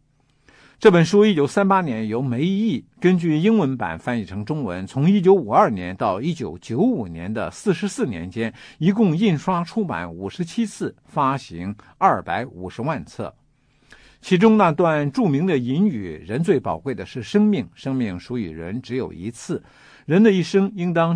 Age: 50-69